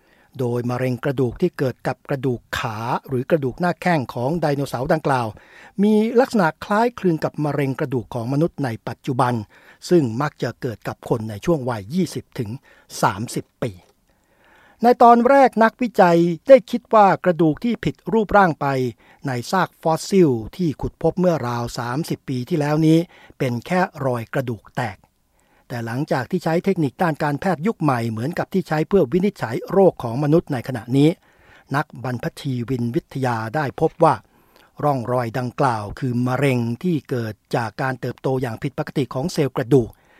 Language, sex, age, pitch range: Thai, male, 60-79, 125-170 Hz